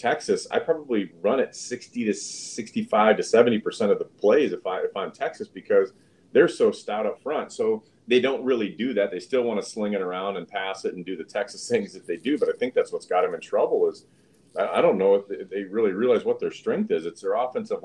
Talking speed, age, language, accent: 240 wpm, 40-59, English, American